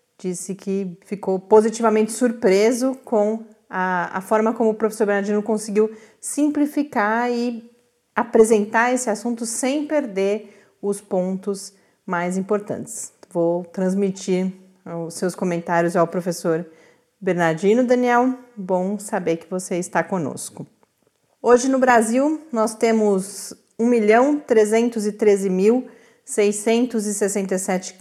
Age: 40-59